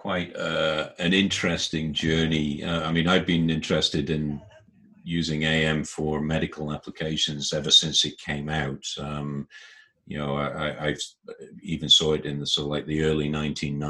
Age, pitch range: 50-69, 75-95 Hz